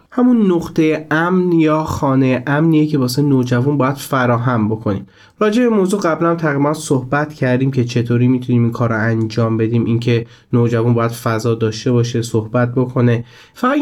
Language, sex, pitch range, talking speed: Persian, male, 125-170 Hz, 160 wpm